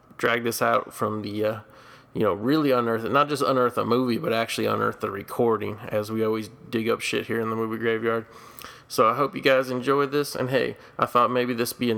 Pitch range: 115-130 Hz